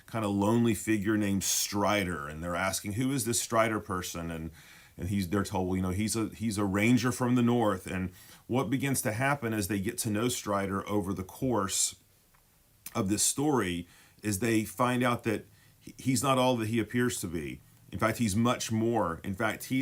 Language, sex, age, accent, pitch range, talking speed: English, male, 40-59, American, 95-115 Hz, 205 wpm